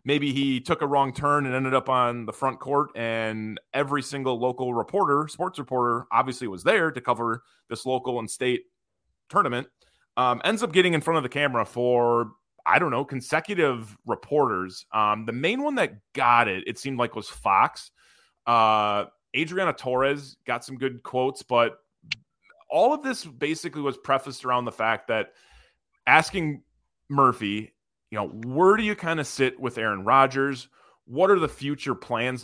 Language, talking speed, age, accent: English, 170 wpm, 30-49, American